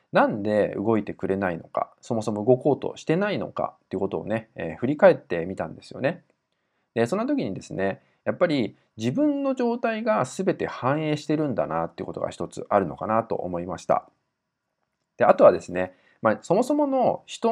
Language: Japanese